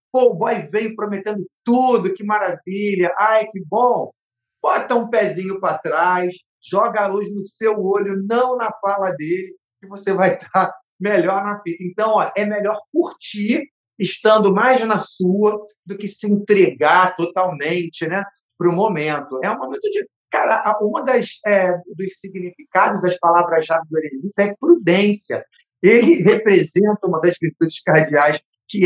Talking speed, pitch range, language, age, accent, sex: 150 wpm, 175-220 Hz, Portuguese, 40-59, Brazilian, male